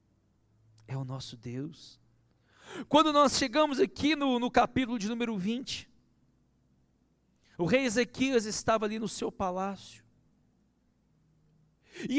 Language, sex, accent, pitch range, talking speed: Portuguese, male, Brazilian, 180-275 Hz, 115 wpm